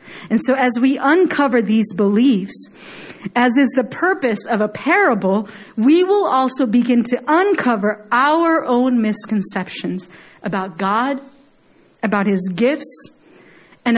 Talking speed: 125 wpm